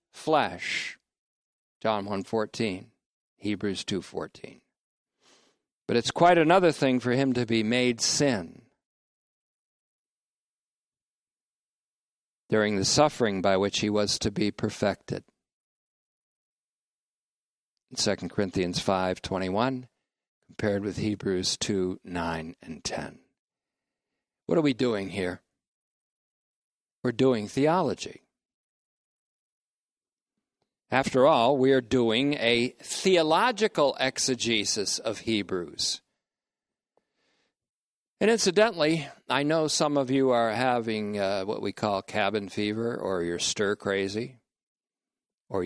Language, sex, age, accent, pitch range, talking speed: English, male, 50-69, American, 100-135 Hz, 105 wpm